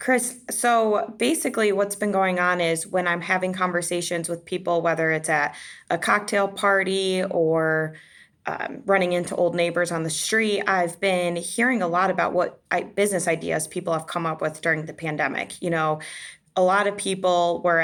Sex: female